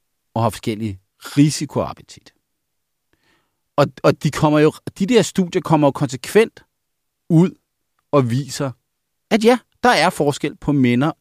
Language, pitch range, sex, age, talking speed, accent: Danish, 105-150 Hz, male, 40-59, 140 wpm, native